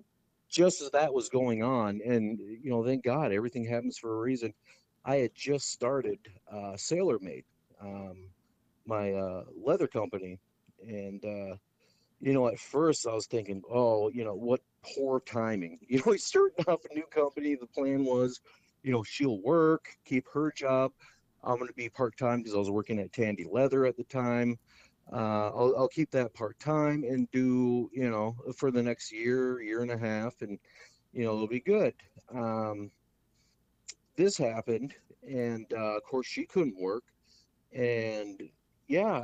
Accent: American